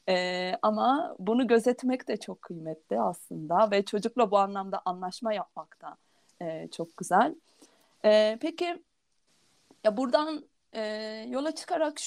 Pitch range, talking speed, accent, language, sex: 195-255 Hz, 125 wpm, native, Turkish, female